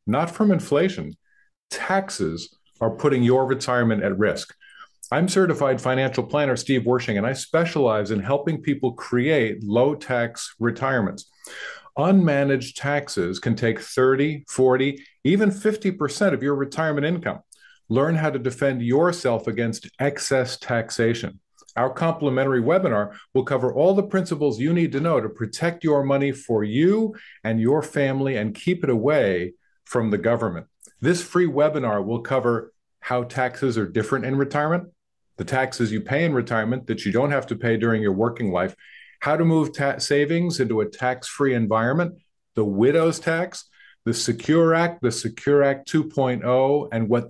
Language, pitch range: English, 120-155 Hz